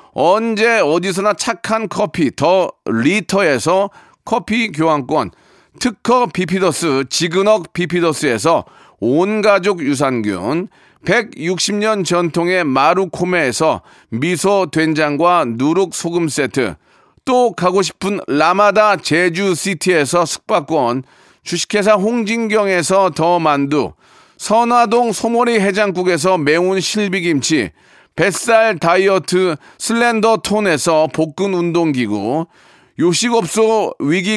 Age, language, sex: 40-59, Korean, male